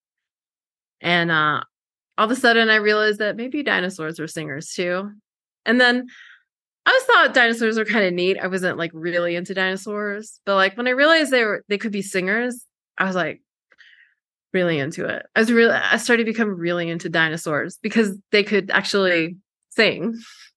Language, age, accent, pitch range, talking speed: English, 20-39, American, 175-230 Hz, 180 wpm